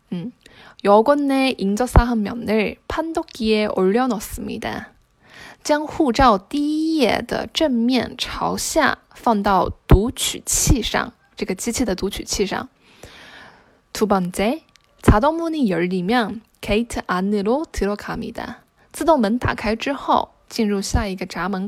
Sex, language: female, Chinese